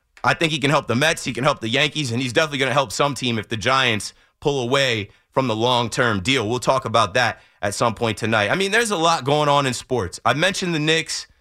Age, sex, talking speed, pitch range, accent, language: 30-49, male, 265 wpm, 140-210 Hz, American, English